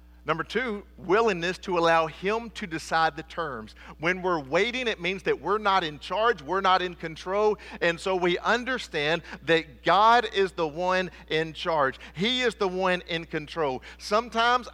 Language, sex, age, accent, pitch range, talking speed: English, male, 40-59, American, 160-220 Hz, 170 wpm